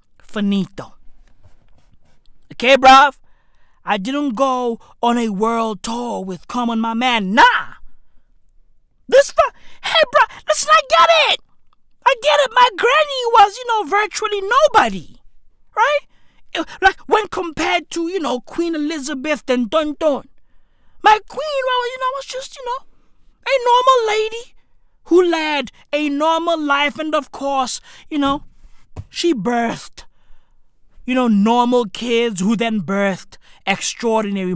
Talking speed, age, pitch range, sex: 130 wpm, 30-49, 225-335 Hz, male